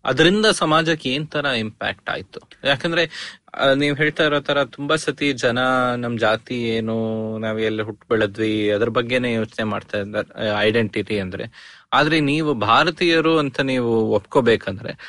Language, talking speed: Kannada, 130 wpm